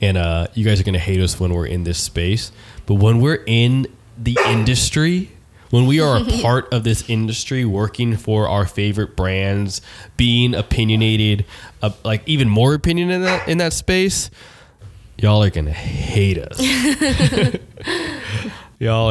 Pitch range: 95-115 Hz